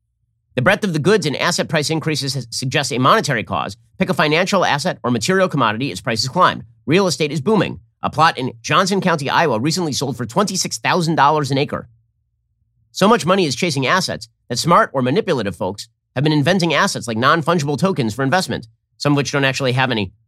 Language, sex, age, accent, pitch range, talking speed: English, male, 40-59, American, 115-160 Hz, 195 wpm